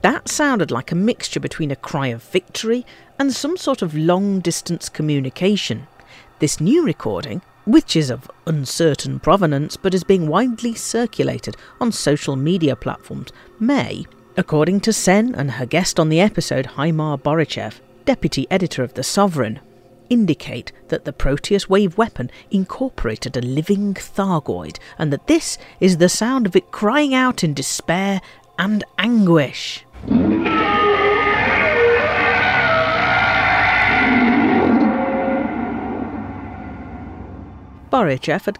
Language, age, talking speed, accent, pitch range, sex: English, 50-69, 120 wpm, British, 140-225 Hz, female